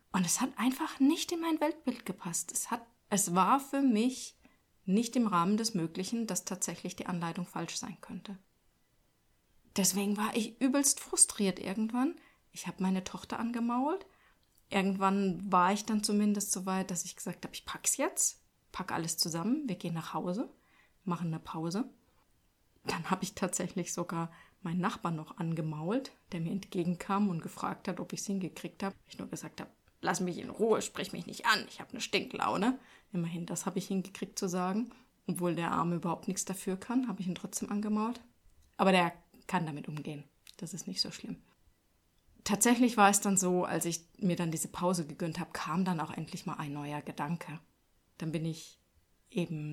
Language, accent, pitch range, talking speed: German, German, 175-220 Hz, 185 wpm